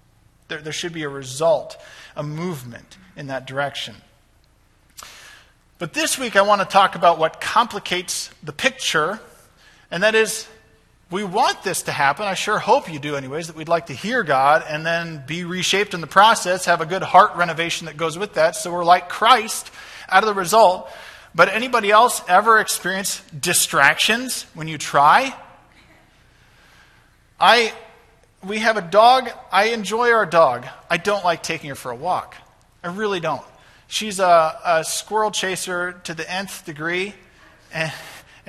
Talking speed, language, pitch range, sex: 165 wpm, English, 165-210 Hz, male